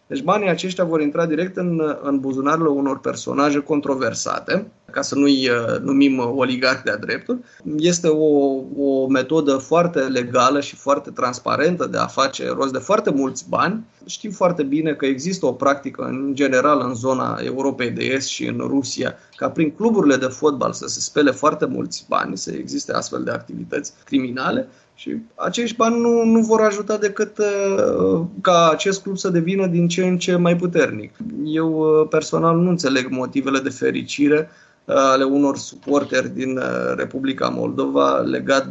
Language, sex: Romanian, male